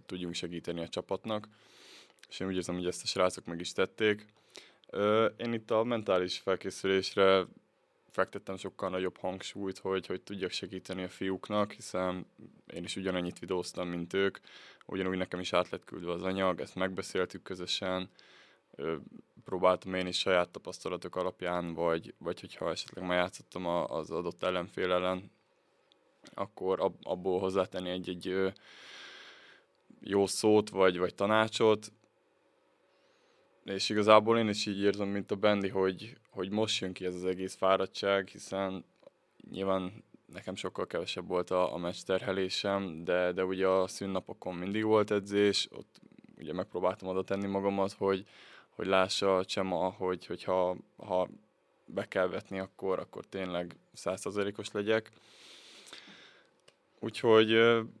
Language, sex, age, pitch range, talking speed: Hungarian, male, 20-39, 90-100 Hz, 135 wpm